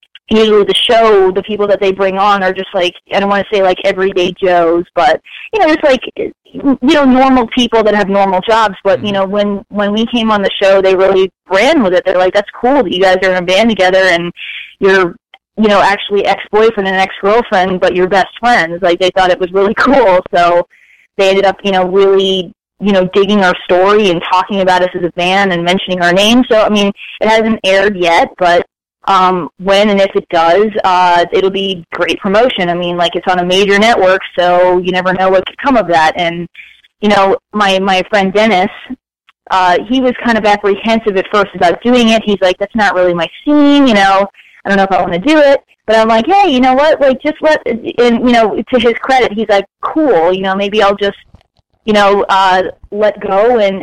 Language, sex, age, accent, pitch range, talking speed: English, female, 20-39, American, 185-220 Hz, 230 wpm